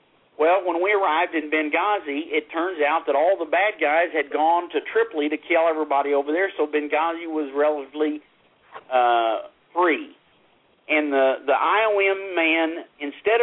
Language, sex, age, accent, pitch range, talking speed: English, male, 50-69, American, 140-170 Hz, 155 wpm